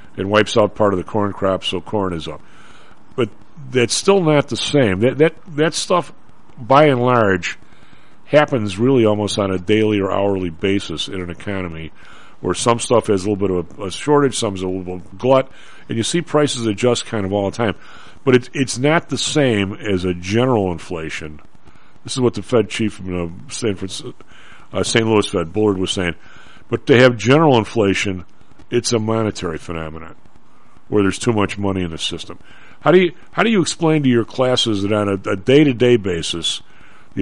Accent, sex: American, male